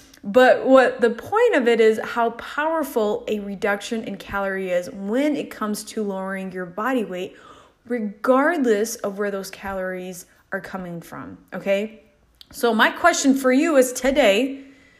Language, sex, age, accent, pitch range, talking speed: English, female, 20-39, American, 200-255 Hz, 150 wpm